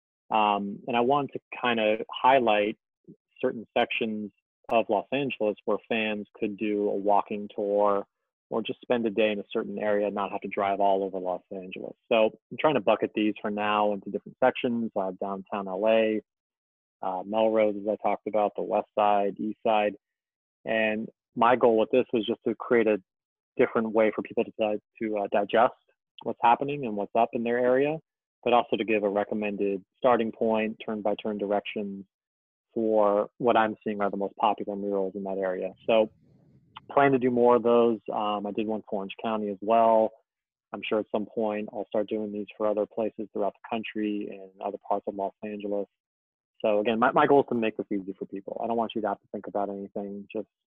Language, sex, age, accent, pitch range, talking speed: English, male, 20-39, American, 100-110 Hz, 205 wpm